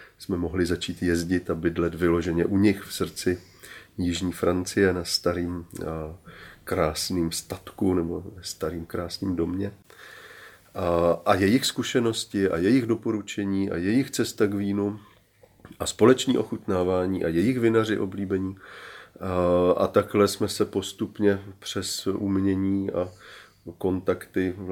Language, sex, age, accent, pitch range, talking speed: Czech, male, 40-59, native, 90-105 Hz, 115 wpm